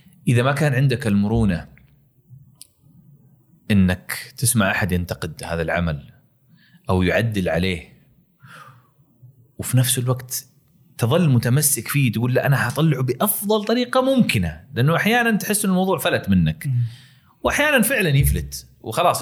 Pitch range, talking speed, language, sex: 110-145 Hz, 120 wpm, Arabic, male